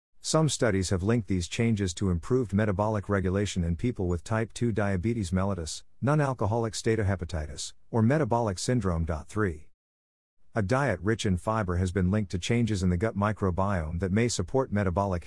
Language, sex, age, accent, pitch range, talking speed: English, male, 50-69, American, 90-110 Hz, 160 wpm